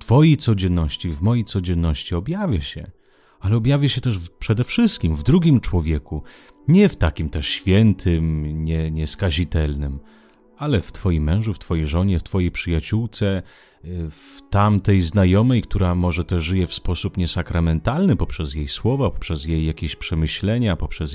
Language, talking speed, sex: Italian, 145 wpm, male